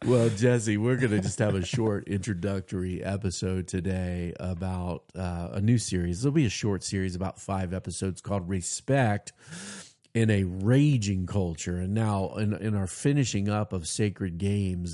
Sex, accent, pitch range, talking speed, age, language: male, American, 90-110 Hz, 165 wpm, 40-59, English